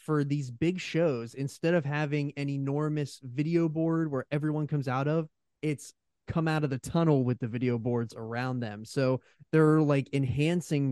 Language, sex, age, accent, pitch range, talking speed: English, male, 20-39, American, 125-155 Hz, 175 wpm